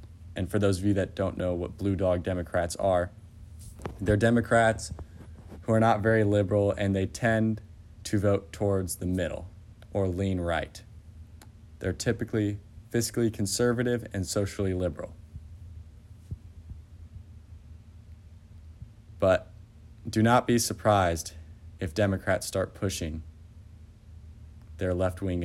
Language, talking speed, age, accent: English, 115 wpm, 20-39, American